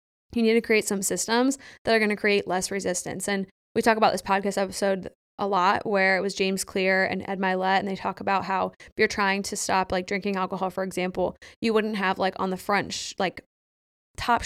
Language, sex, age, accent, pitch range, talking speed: English, female, 20-39, American, 190-220 Hz, 225 wpm